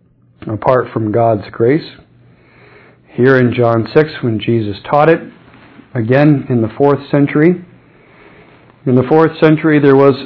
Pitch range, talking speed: 115-150 Hz, 135 wpm